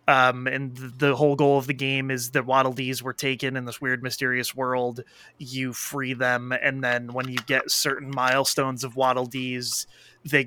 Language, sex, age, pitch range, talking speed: English, male, 20-39, 125-145 Hz, 195 wpm